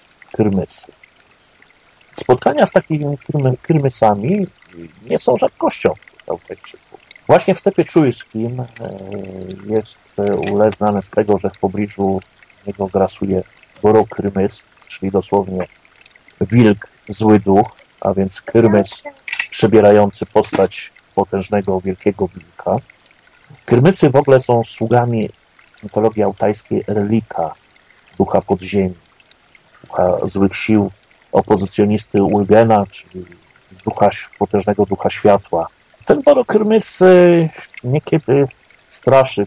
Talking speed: 90 wpm